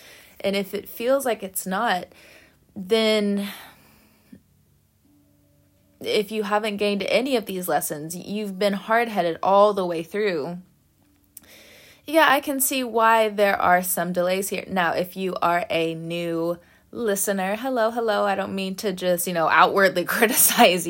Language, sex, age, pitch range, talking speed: English, female, 20-39, 170-215 Hz, 145 wpm